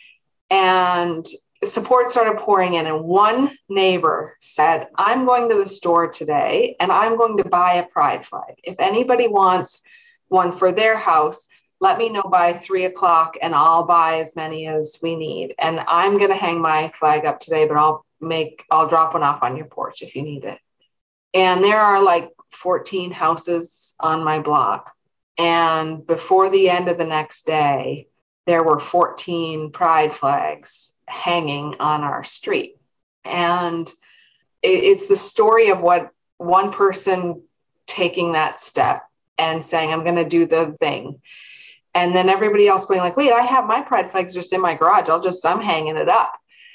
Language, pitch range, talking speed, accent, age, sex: English, 160-205 Hz, 170 wpm, American, 30-49, female